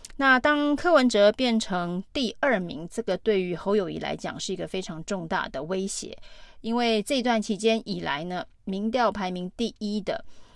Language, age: Chinese, 30-49